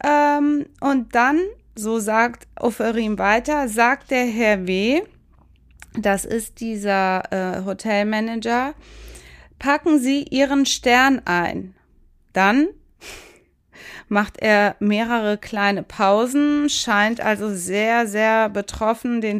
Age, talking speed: 20-39, 100 wpm